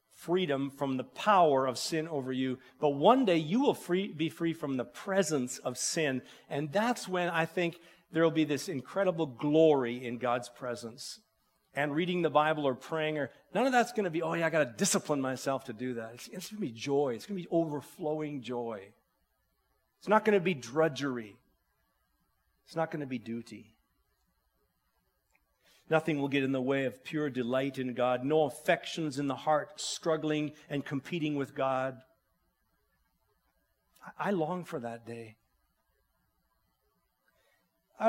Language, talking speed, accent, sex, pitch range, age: English, 175 wpm, American, male, 125-165 Hz, 40-59